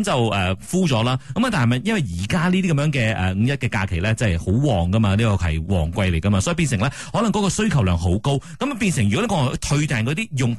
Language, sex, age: Chinese, male, 30-49